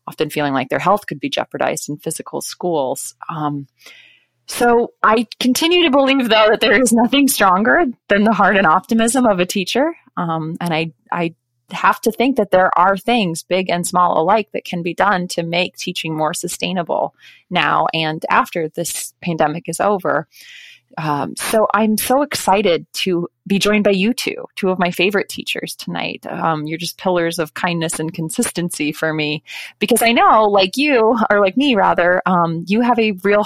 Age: 20-39